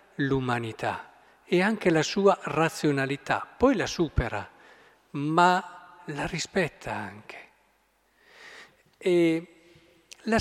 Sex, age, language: male, 50-69, Italian